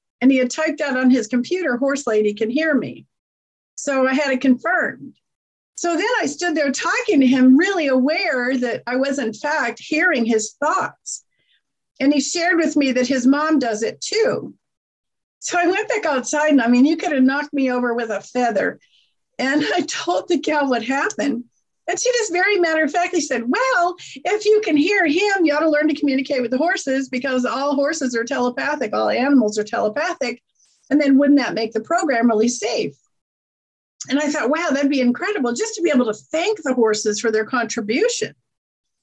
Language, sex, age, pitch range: English, female, 50-69, 245-320 Hz